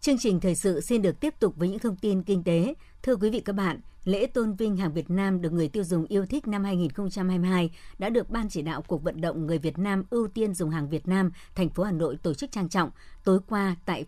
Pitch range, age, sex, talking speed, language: 170-205 Hz, 60-79, male, 260 wpm, Vietnamese